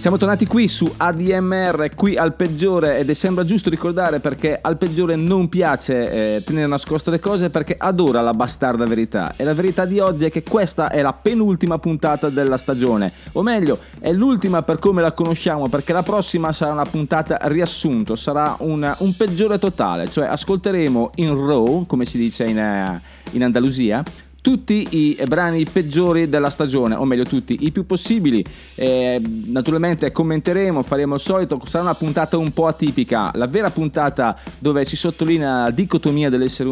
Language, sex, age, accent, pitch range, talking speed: Italian, male, 30-49, native, 140-180 Hz, 170 wpm